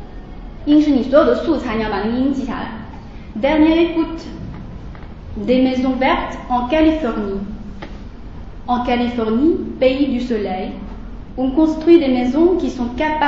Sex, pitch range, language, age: female, 235-300 Hz, Chinese, 30-49